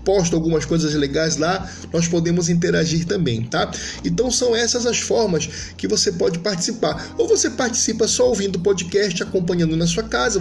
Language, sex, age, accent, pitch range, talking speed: Portuguese, male, 20-39, Brazilian, 155-210 Hz, 175 wpm